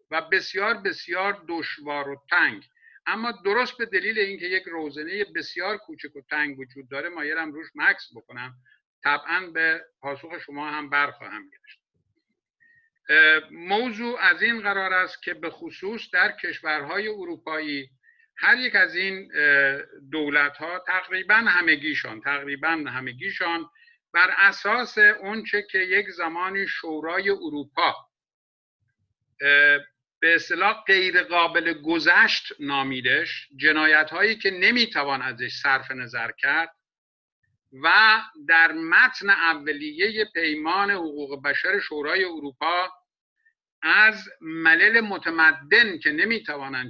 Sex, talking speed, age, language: male, 110 wpm, 50-69, Persian